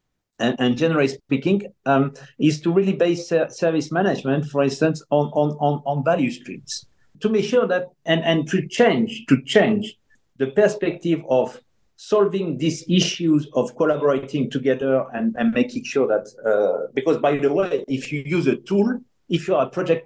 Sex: male